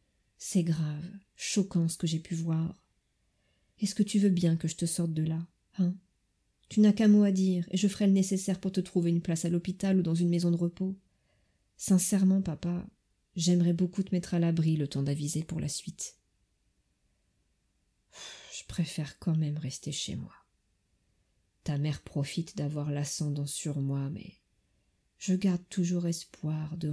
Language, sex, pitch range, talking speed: French, female, 145-180 Hz, 175 wpm